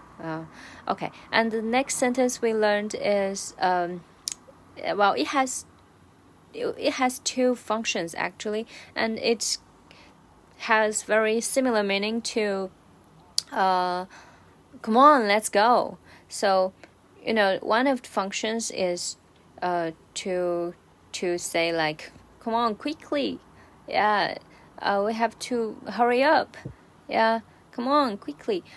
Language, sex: Chinese, female